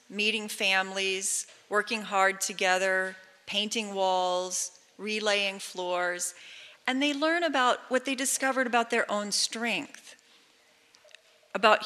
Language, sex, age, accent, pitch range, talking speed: English, female, 40-59, American, 200-260 Hz, 105 wpm